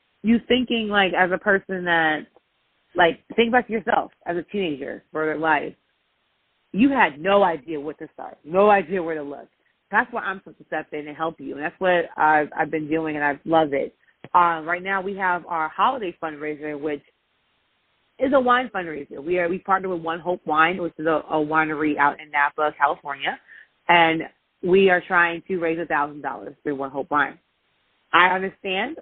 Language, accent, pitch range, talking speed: English, American, 155-210 Hz, 190 wpm